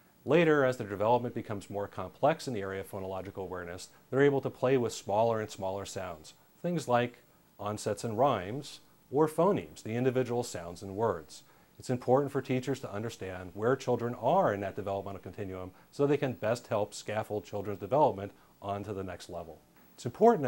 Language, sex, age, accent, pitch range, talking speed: English, male, 40-59, American, 100-125 Hz, 180 wpm